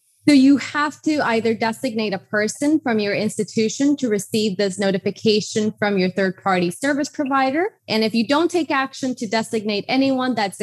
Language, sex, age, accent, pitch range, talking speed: English, female, 20-39, American, 195-245 Hz, 170 wpm